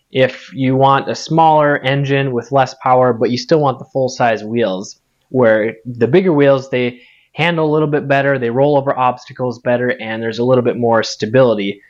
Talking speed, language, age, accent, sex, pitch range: 190 wpm, English, 20-39, American, male, 120-140 Hz